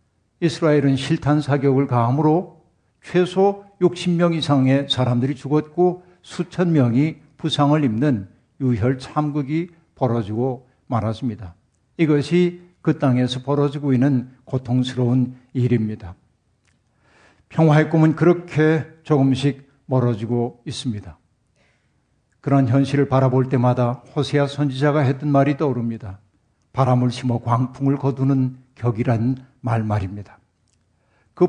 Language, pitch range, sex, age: Korean, 125-160 Hz, male, 60-79